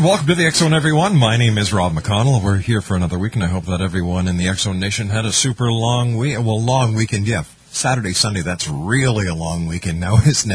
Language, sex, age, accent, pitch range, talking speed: English, male, 50-69, American, 90-120 Hz, 235 wpm